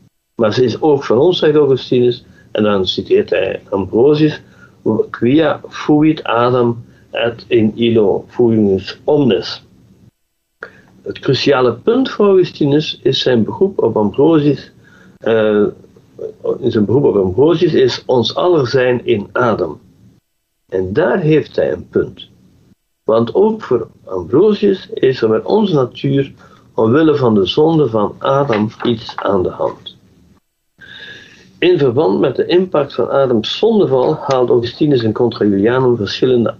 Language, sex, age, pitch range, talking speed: Dutch, male, 60-79, 115-185 Hz, 135 wpm